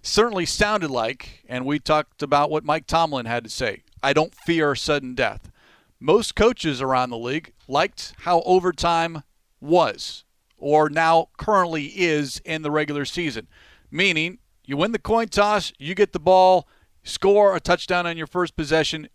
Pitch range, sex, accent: 145-180 Hz, male, American